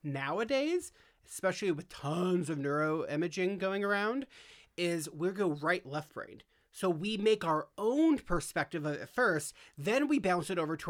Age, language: 30-49, English